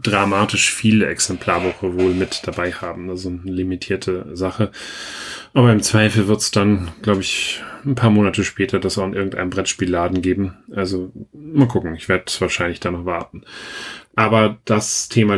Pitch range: 95-110 Hz